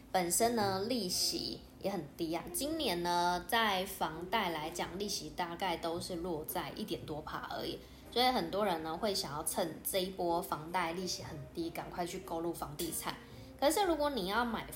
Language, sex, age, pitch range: Chinese, female, 10-29, 170-205 Hz